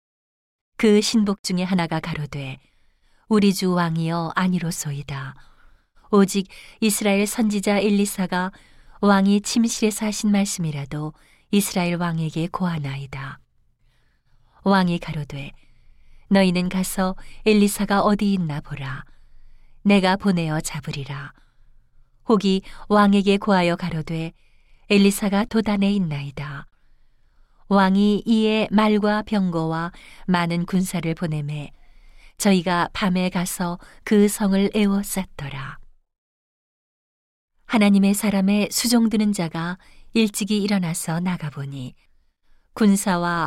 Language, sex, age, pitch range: Korean, female, 40-59, 160-205 Hz